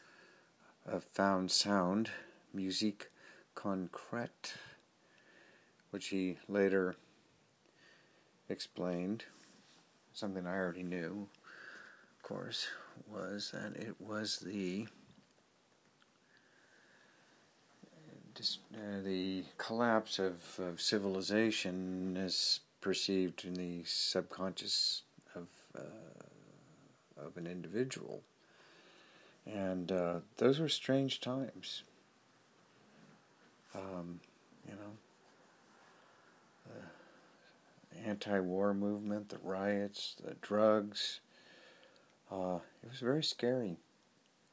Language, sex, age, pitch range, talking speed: English, male, 50-69, 95-105 Hz, 75 wpm